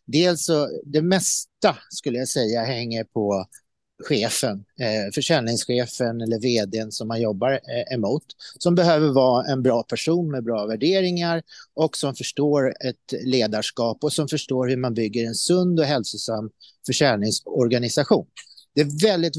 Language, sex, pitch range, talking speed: Swedish, male, 115-160 Hz, 145 wpm